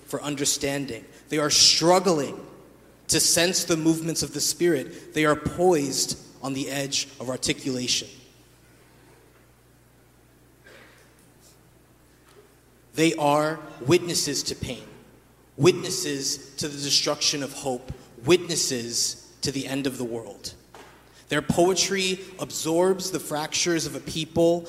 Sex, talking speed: male, 110 wpm